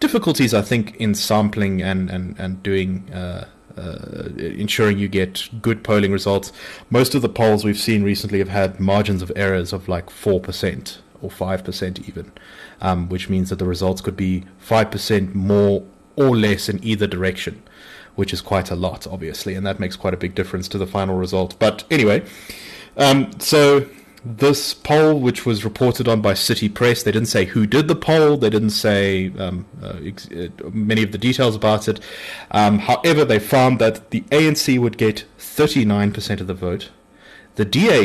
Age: 30-49